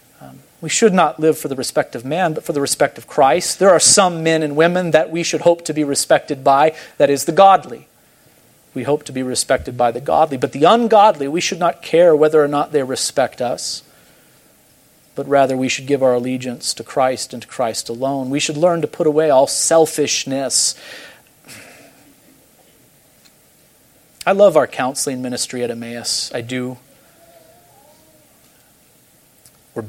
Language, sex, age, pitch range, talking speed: English, male, 40-59, 125-175 Hz, 170 wpm